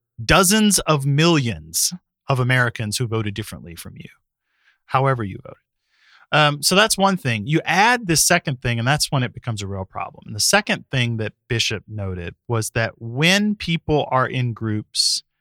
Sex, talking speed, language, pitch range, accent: male, 170 wpm, English, 110-135 Hz, American